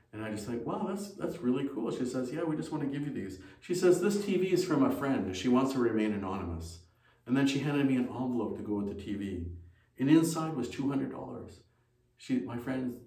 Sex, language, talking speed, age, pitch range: male, English, 235 wpm, 50-69, 110-160 Hz